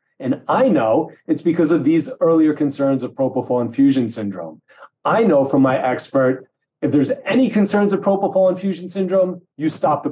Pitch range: 130-185 Hz